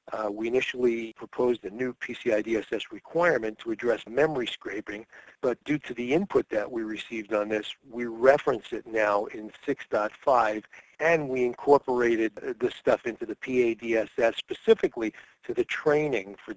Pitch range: 110-140 Hz